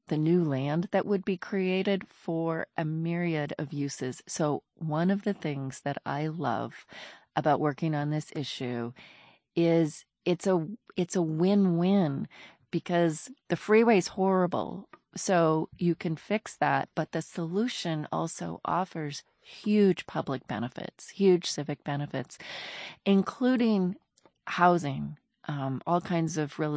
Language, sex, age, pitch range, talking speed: English, female, 30-49, 145-175 Hz, 135 wpm